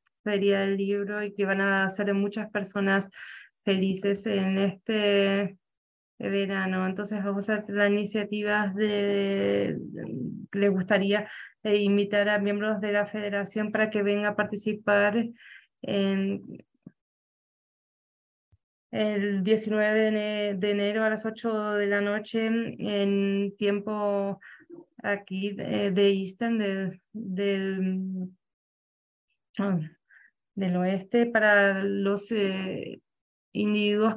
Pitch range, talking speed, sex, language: 200-215 Hz, 105 wpm, female, English